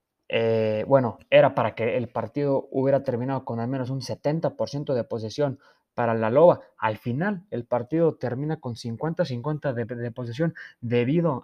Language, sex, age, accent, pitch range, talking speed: Spanish, male, 20-39, Mexican, 120-140 Hz, 150 wpm